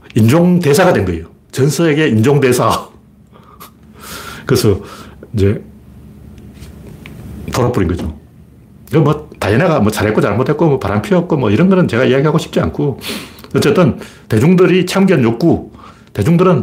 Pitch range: 110-165 Hz